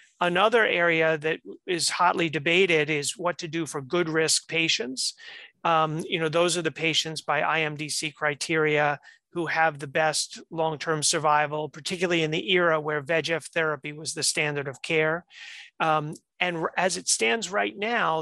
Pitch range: 155-175 Hz